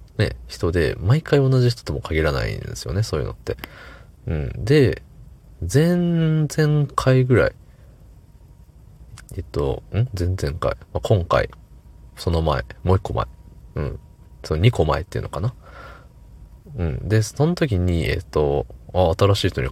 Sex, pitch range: male, 80-110 Hz